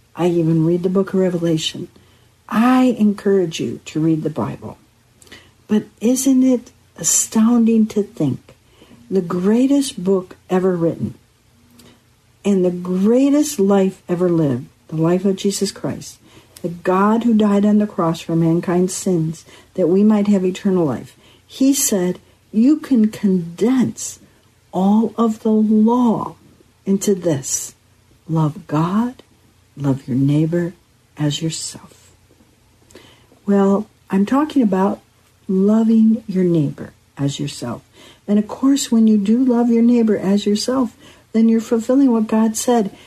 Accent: American